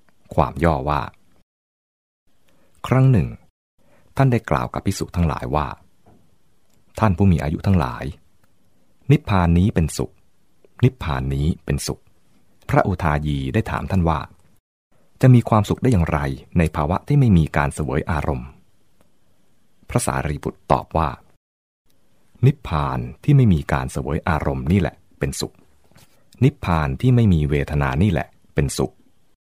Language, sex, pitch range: English, male, 75-100 Hz